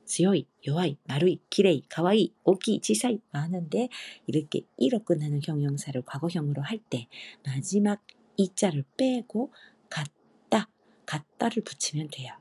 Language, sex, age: Korean, female, 40-59